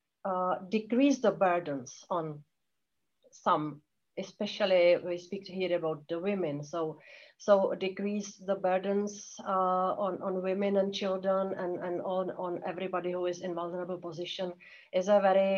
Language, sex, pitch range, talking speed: English, female, 180-200 Hz, 145 wpm